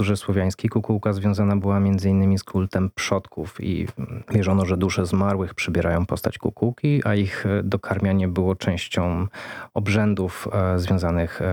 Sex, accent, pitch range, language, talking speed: male, native, 95-110 Hz, Polish, 125 wpm